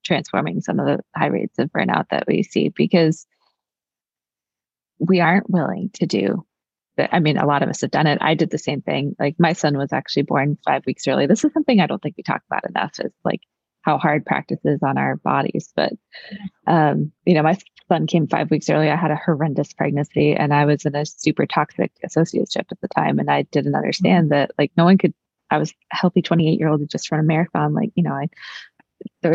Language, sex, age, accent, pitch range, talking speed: English, female, 20-39, American, 155-190 Hz, 230 wpm